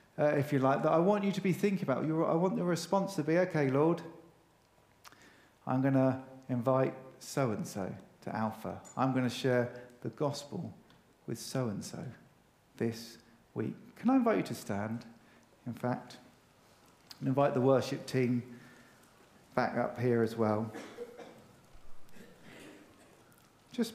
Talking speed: 150 wpm